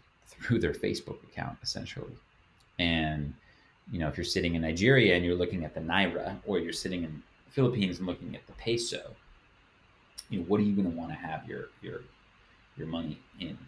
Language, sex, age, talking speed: English, male, 30-49, 195 wpm